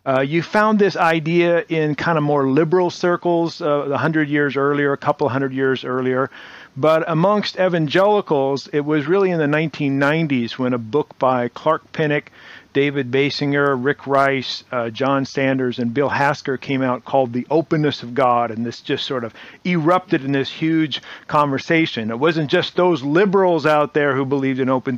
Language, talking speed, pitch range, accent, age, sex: English, 175 wpm, 135-165 Hz, American, 50-69, male